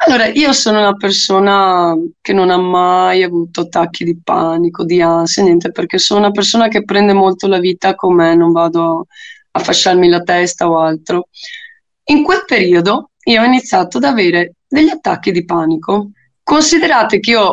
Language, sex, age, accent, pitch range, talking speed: Italian, female, 20-39, native, 175-240 Hz, 170 wpm